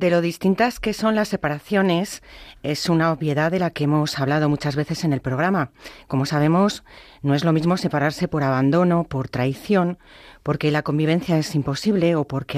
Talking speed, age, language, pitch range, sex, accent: 180 wpm, 40-59, Spanish, 145-180 Hz, female, Spanish